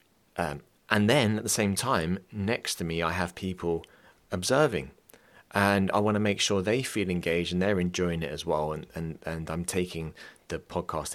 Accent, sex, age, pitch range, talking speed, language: British, male, 30-49, 80-105 Hz, 195 wpm, English